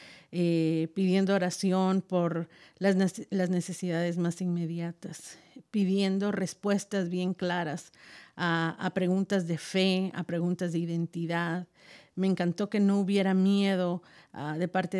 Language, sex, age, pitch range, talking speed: Spanish, female, 50-69, 170-195 Hz, 125 wpm